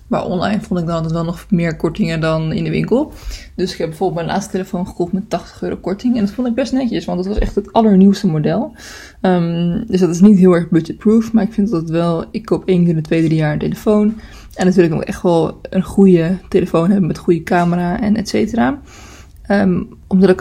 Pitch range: 165-200 Hz